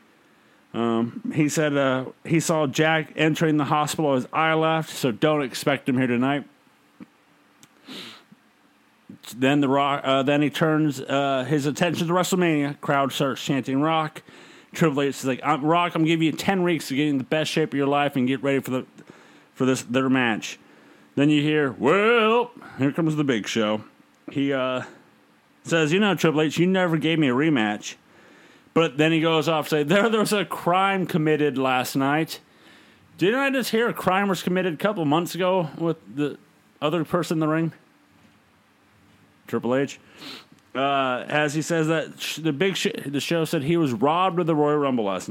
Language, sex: English, male